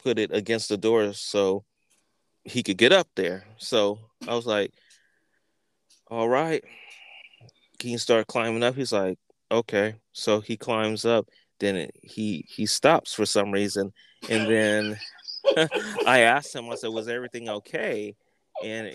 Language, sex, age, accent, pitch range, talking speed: English, male, 20-39, American, 110-150 Hz, 150 wpm